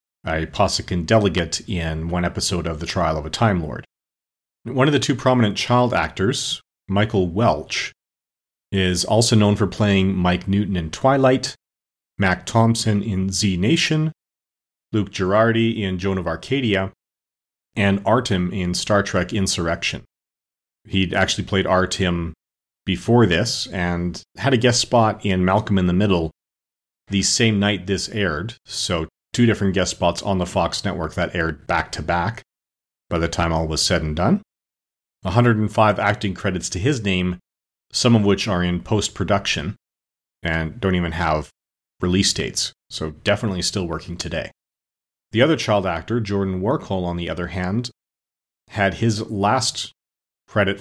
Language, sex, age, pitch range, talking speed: English, male, 40-59, 90-110 Hz, 150 wpm